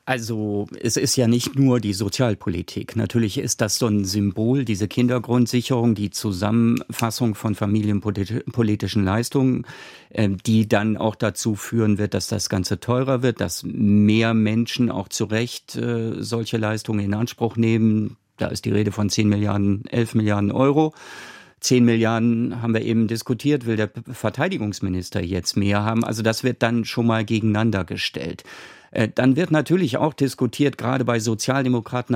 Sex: male